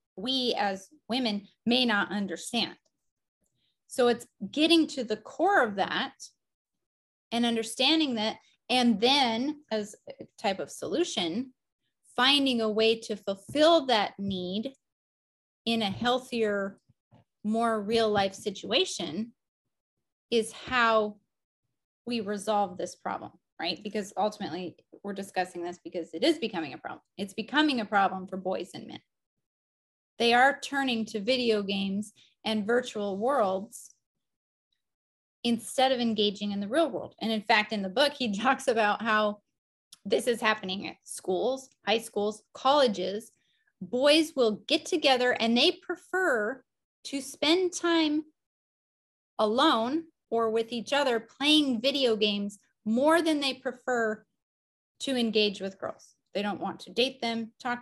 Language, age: English, 30-49